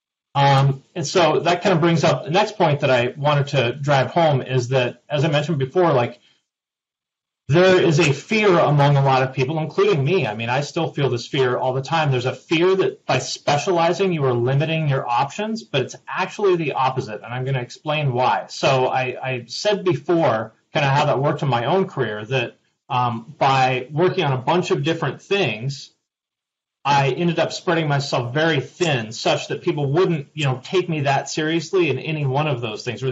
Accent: American